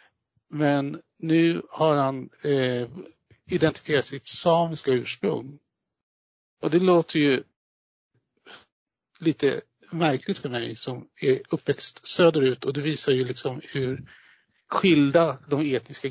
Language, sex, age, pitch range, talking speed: Swedish, male, 60-79, 125-160 Hz, 110 wpm